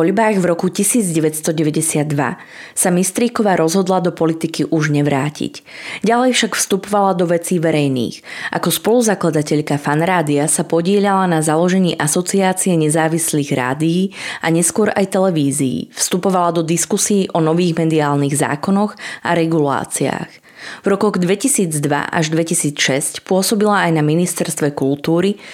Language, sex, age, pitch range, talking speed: Slovak, female, 20-39, 155-185 Hz, 120 wpm